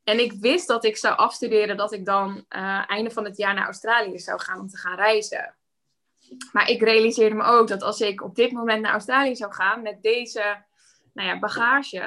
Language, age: Dutch, 20-39